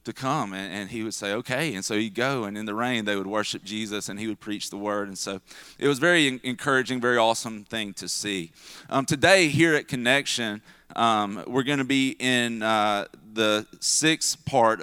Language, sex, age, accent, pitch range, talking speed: English, male, 30-49, American, 110-130 Hz, 210 wpm